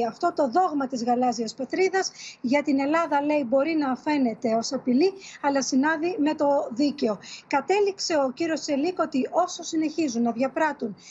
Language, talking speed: Greek, 155 wpm